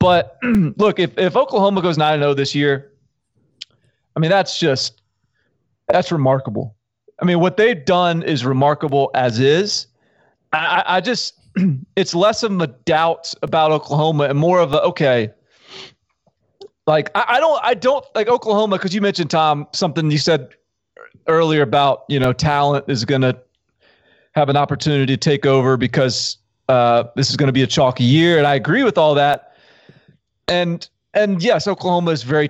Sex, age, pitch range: male, 30-49, 130-165 Hz